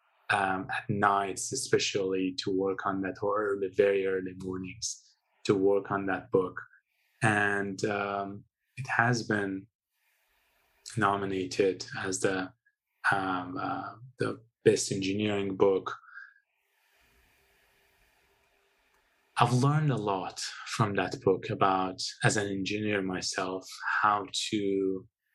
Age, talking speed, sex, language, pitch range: 20-39, 110 wpm, male, English, 95-120 Hz